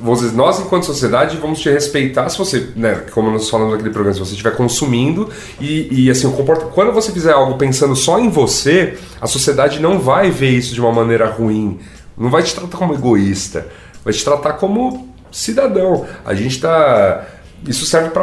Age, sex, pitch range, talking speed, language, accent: 30-49, male, 105-145 Hz, 185 wpm, Portuguese, Brazilian